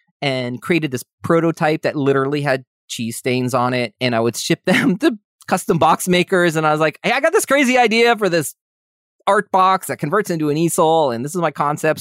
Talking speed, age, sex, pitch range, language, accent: 220 wpm, 30-49, male, 125-165 Hz, English, American